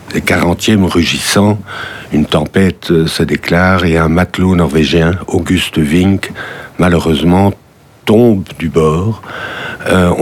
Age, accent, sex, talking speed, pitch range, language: 60-79, French, male, 105 wpm, 80-100 Hz, French